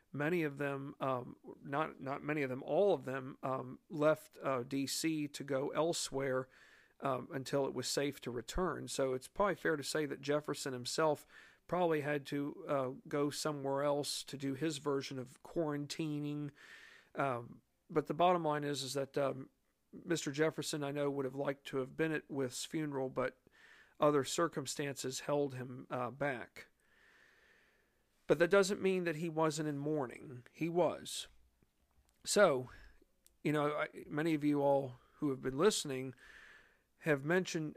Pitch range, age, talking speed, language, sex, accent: 135-160 Hz, 50-69, 160 wpm, English, male, American